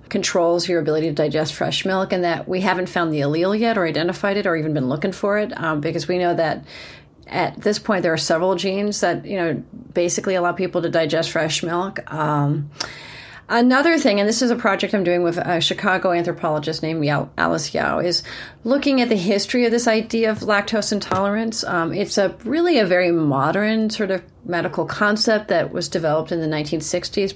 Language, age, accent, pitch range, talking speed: English, 30-49, American, 160-200 Hz, 200 wpm